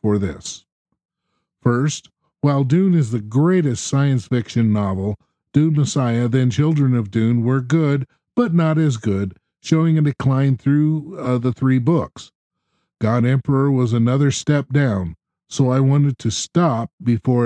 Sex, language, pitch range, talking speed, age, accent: male, English, 115-150 Hz, 150 wpm, 50-69, American